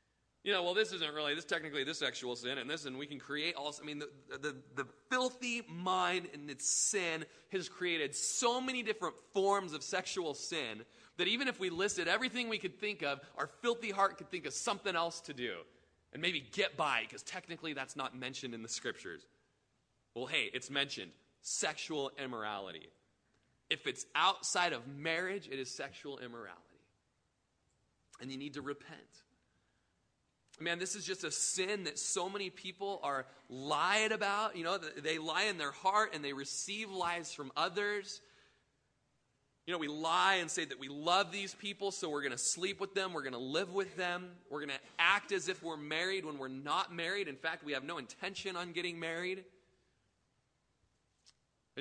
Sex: male